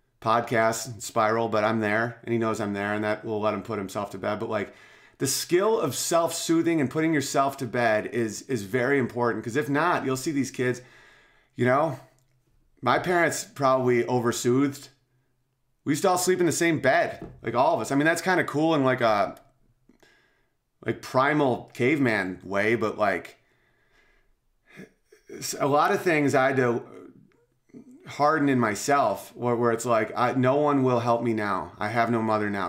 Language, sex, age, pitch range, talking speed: English, male, 30-49, 115-140 Hz, 185 wpm